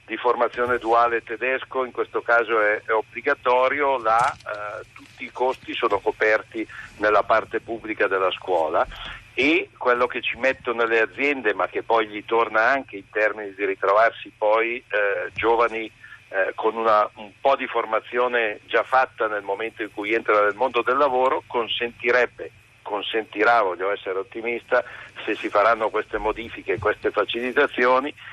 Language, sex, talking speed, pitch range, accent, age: Italian, male, 155 wpm, 110-135 Hz, native, 60-79